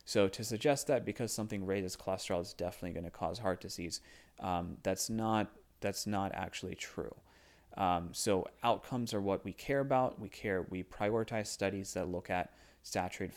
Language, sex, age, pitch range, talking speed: English, male, 30-49, 90-110 Hz, 170 wpm